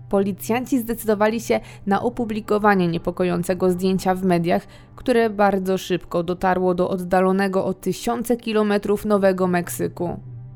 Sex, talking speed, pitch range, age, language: female, 115 wpm, 185-220 Hz, 20-39, Polish